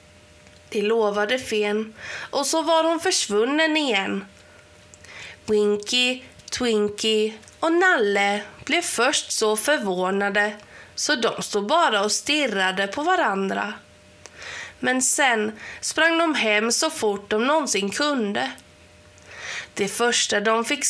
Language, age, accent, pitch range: Swedish, 20-39, native, 205-280 Hz